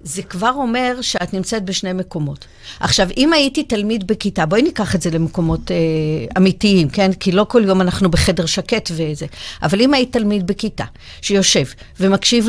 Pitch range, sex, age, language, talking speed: 185-240 Hz, female, 50-69, Hebrew, 170 wpm